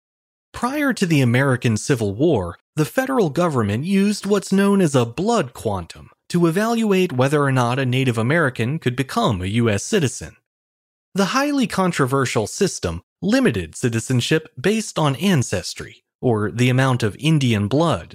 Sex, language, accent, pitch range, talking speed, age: male, English, American, 115-185 Hz, 145 wpm, 30-49